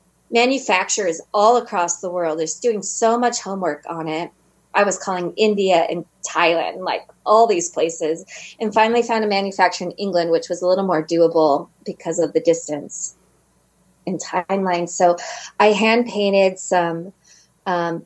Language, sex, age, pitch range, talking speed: English, female, 20-39, 175-215 Hz, 155 wpm